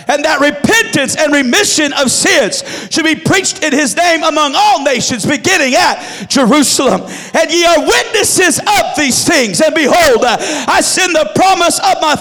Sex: male